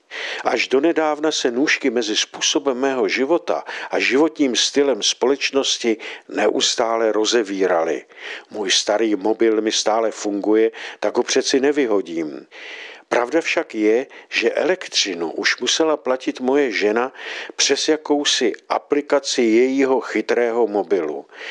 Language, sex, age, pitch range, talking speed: Czech, male, 50-69, 115-150 Hz, 115 wpm